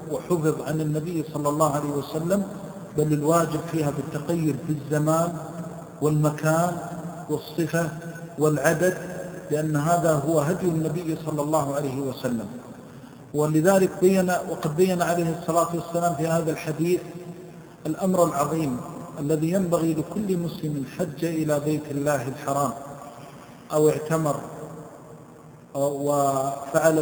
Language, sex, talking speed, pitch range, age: Arabic, male, 105 wpm, 145-165 Hz, 50-69